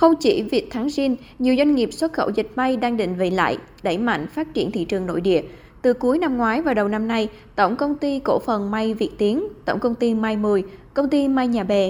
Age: 20-39